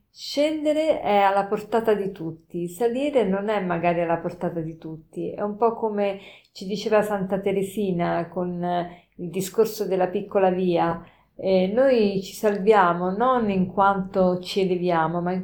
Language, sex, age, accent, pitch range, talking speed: Italian, female, 40-59, native, 175-205 Hz, 150 wpm